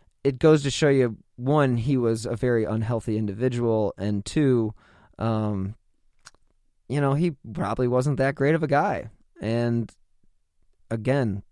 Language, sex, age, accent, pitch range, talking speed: English, male, 30-49, American, 105-135 Hz, 140 wpm